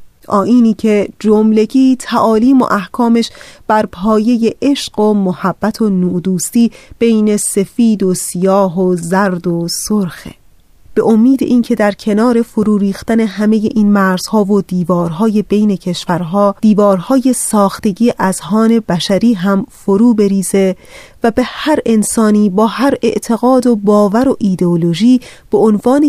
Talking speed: 130 wpm